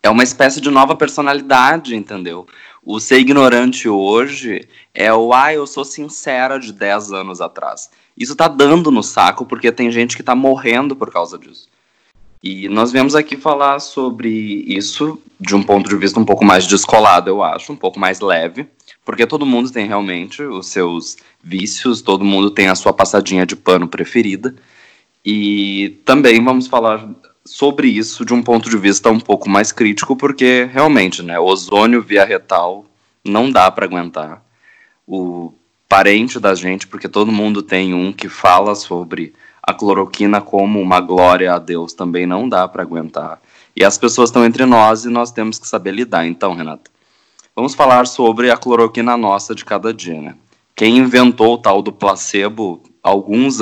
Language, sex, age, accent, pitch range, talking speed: Portuguese, male, 20-39, Brazilian, 95-125 Hz, 175 wpm